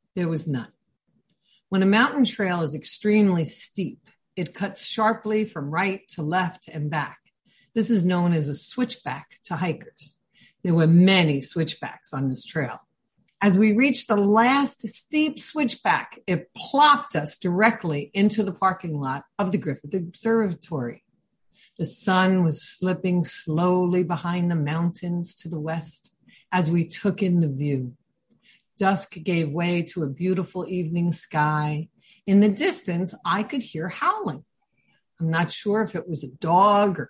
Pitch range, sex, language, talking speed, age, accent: 160-215 Hz, female, English, 150 wpm, 50-69, American